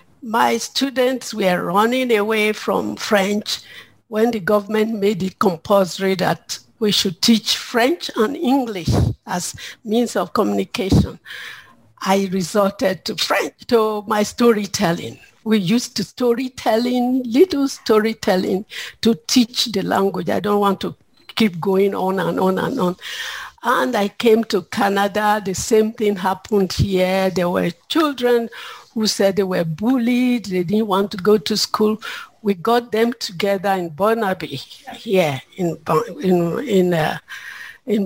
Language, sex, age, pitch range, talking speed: English, female, 50-69, 190-230 Hz, 140 wpm